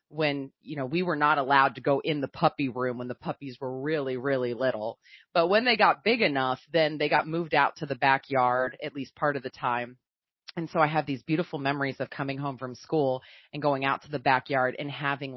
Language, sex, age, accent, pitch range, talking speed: English, female, 30-49, American, 135-170 Hz, 235 wpm